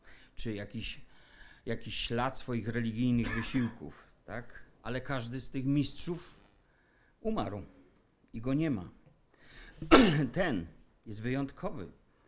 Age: 50-69